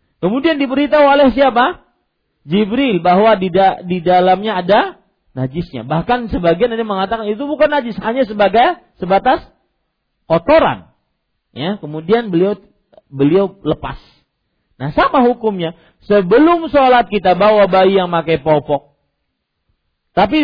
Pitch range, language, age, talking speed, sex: 145-245 Hz, Malay, 40-59, 115 wpm, male